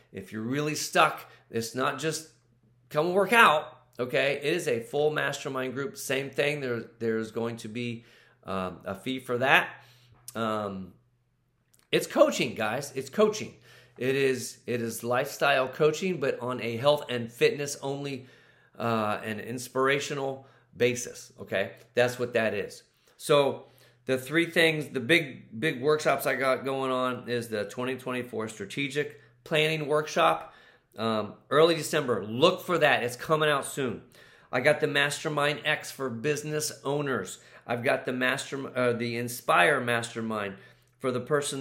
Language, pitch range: English, 120-145 Hz